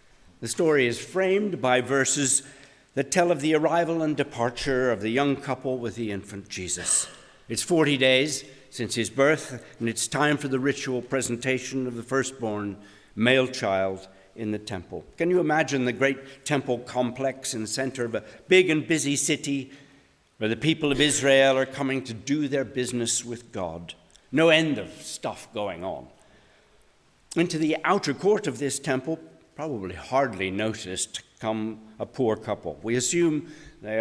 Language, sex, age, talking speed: English, male, 60-79, 165 wpm